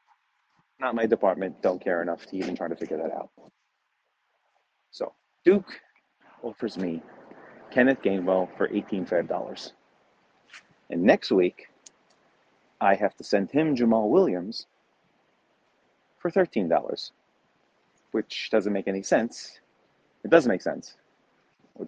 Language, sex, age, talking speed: English, male, 30-49, 125 wpm